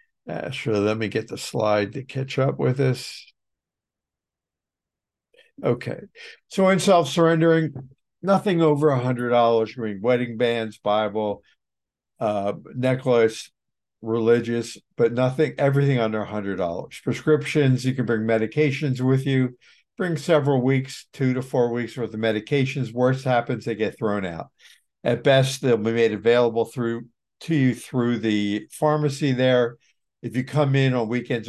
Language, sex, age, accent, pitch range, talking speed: English, male, 60-79, American, 115-140 Hz, 135 wpm